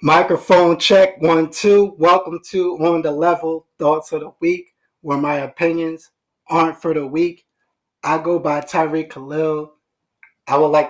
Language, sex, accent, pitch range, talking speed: English, male, American, 140-160 Hz, 155 wpm